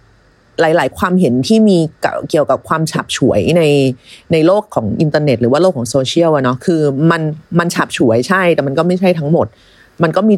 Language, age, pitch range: Thai, 30-49, 150-215 Hz